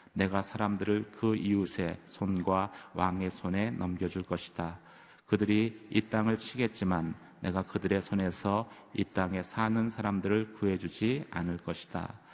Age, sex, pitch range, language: 30-49, male, 95-115 Hz, Korean